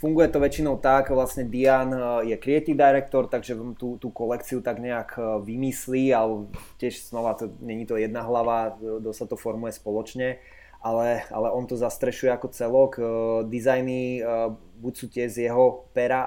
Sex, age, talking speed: male, 20-39, 160 wpm